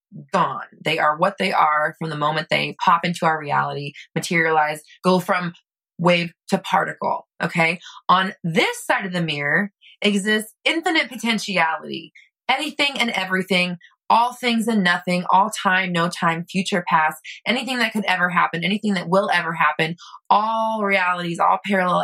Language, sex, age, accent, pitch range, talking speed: English, female, 20-39, American, 170-230 Hz, 155 wpm